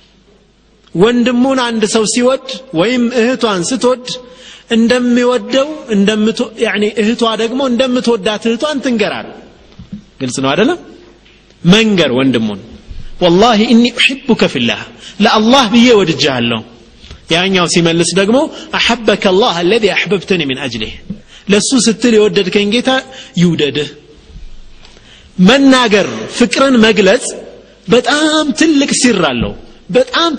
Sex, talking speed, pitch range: male, 95 wpm, 155-240 Hz